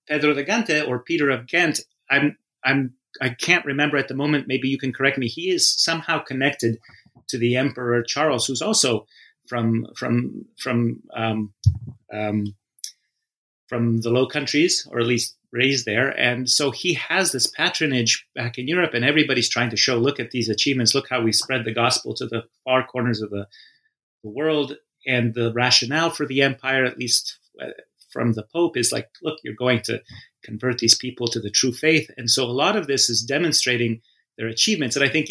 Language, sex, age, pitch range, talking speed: English, male, 30-49, 120-145 Hz, 195 wpm